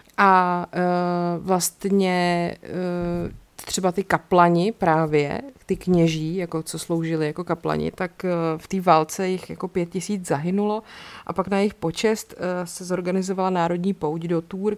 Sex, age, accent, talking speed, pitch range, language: female, 30-49, native, 150 wpm, 160-190 Hz, Czech